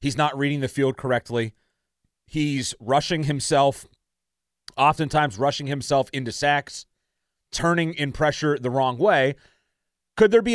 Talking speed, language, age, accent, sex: 130 wpm, English, 30-49, American, male